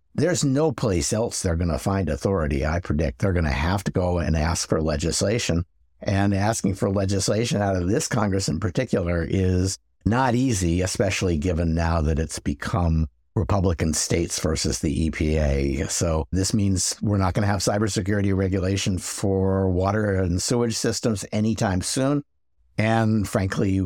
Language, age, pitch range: English, 60-79, 85-105 Hz